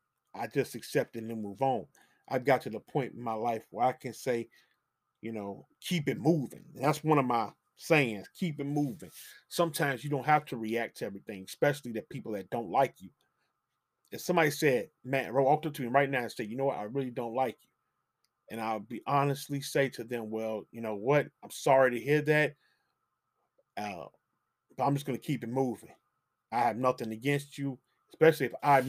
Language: English